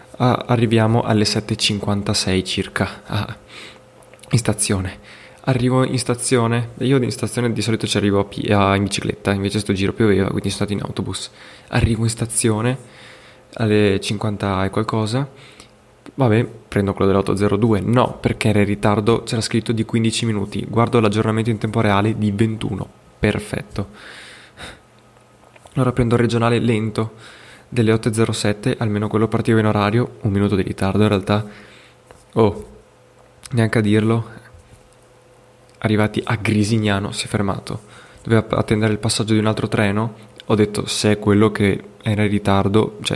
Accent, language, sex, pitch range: native, Italian, male, 105-115 Hz